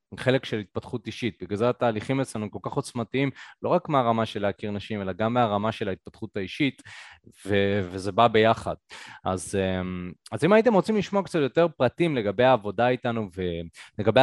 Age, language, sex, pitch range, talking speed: 20-39, Hebrew, male, 105-135 Hz, 170 wpm